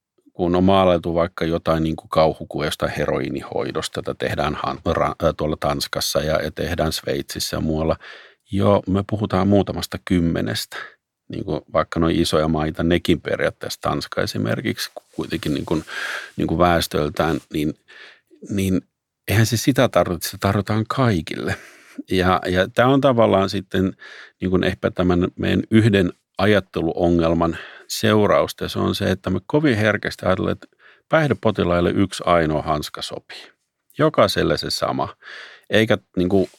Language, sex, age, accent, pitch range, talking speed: Finnish, male, 50-69, native, 85-110 Hz, 125 wpm